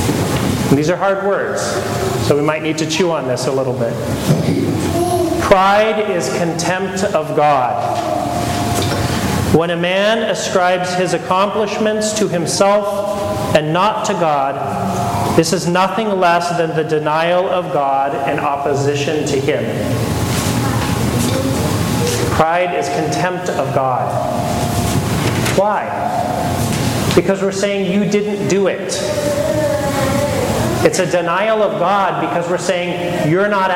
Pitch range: 140-190 Hz